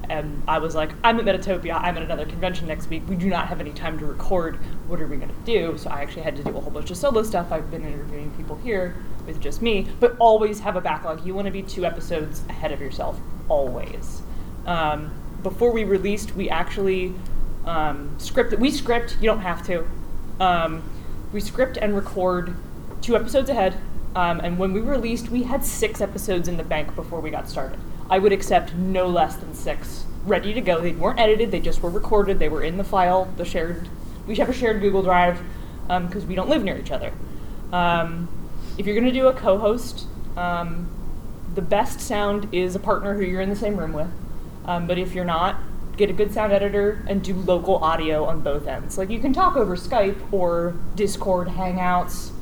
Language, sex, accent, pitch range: English, female, American, 170-205 Hz